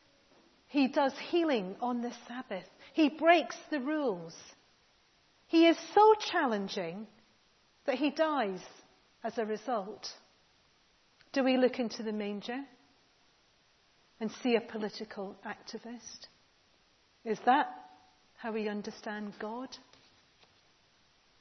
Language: English